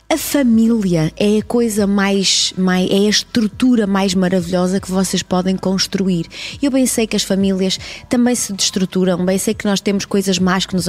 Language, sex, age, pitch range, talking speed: Portuguese, female, 20-39, 180-225 Hz, 175 wpm